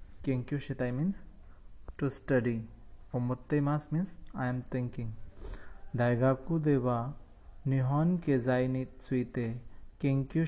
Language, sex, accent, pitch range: Japanese, male, Indian, 110-145 Hz